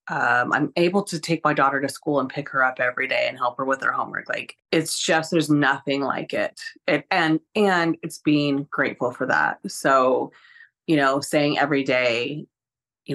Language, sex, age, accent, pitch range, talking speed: English, female, 30-49, American, 140-180 Hz, 195 wpm